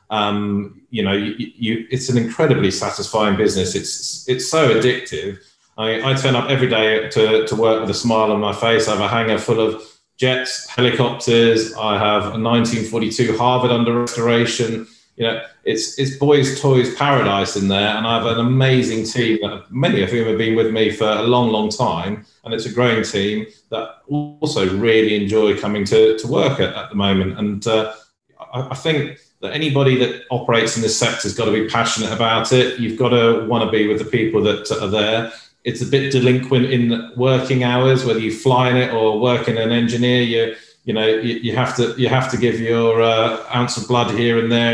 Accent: British